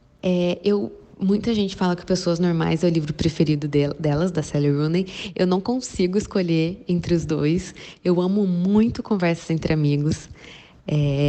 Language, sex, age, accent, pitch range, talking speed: Portuguese, female, 10-29, Brazilian, 155-180 Hz, 165 wpm